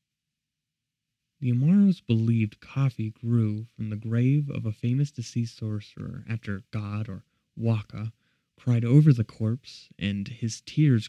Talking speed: 130 wpm